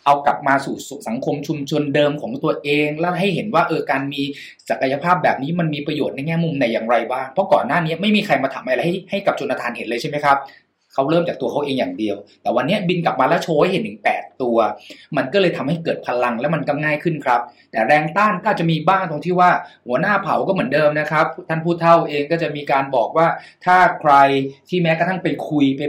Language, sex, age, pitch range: Thai, male, 20-39, 140-180 Hz